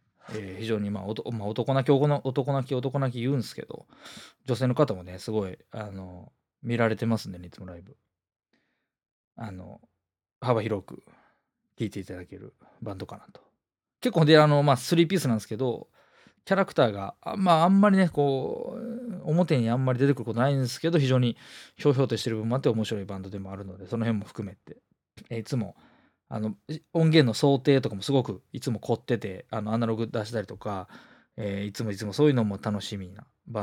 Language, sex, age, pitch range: Japanese, male, 20-39, 105-145 Hz